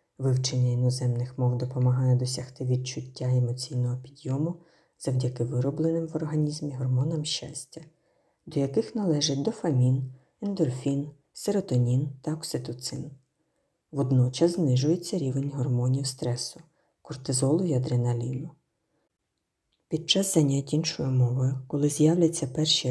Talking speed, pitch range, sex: 100 wpm, 130-160 Hz, female